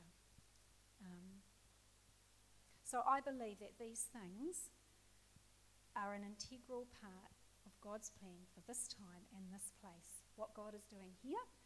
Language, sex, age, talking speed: English, female, 40-59, 130 wpm